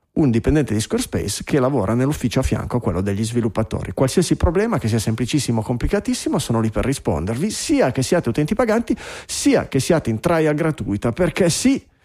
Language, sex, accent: Italian, male, native